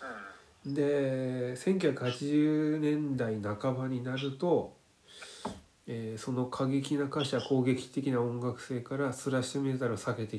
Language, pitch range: Japanese, 120-150 Hz